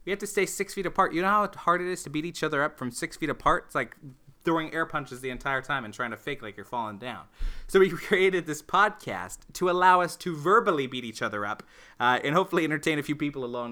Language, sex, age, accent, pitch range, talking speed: English, male, 20-39, American, 130-175 Hz, 265 wpm